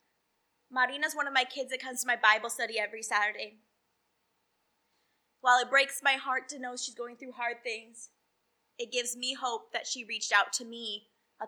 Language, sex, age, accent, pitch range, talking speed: English, female, 20-39, American, 215-260 Hz, 190 wpm